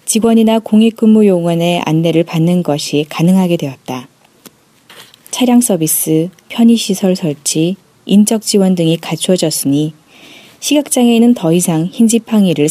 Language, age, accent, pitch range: Korean, 20-39, native, 155-220 Hz